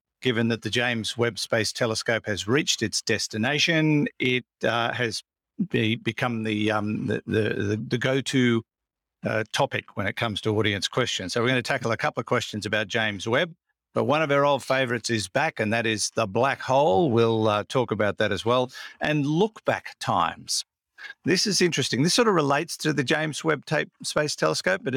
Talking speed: 195 wpm